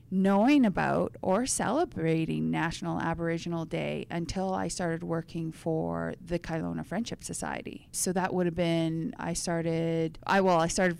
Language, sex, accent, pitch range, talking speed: English, female, American, 160-185 Hz, 145 wpm